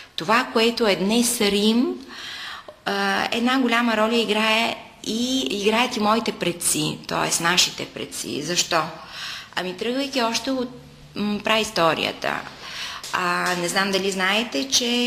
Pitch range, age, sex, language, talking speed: 180-235 Hz, 20-39, female, Bulgarian, 115 wpm